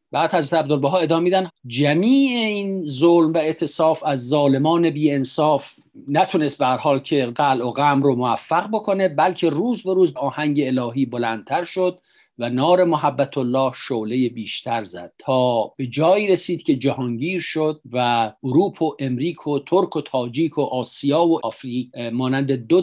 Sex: male